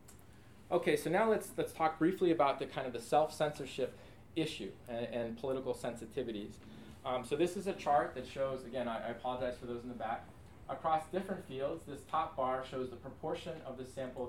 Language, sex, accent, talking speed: English, male, American, 195 wpm